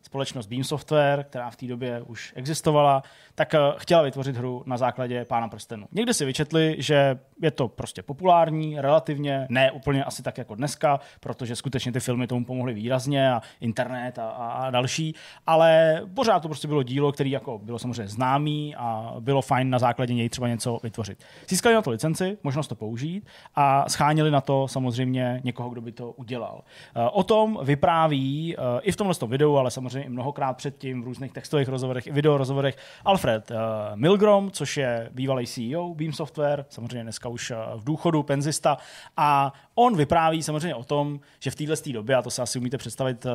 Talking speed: 180 wpm